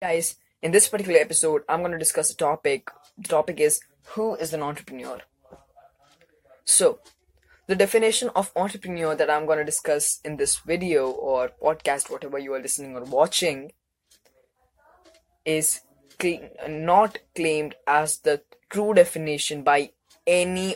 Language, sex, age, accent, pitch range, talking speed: English, female, 20-39, Indian, 145-195 Hz, 140 wpm